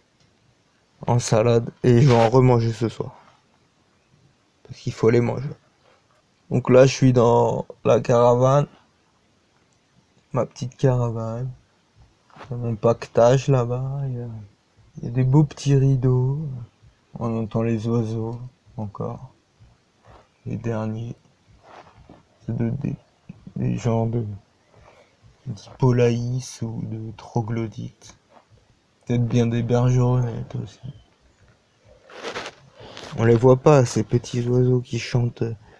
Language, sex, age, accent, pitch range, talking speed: French, male, 20-39, French, 115-135 Hz, 110 wpm